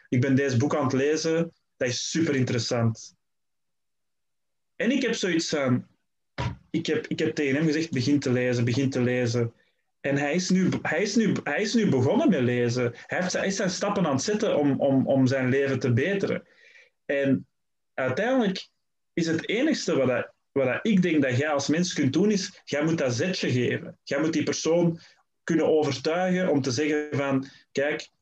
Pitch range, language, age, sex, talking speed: 130-170 Hz, Dutch, 20-39, male, 190 wpm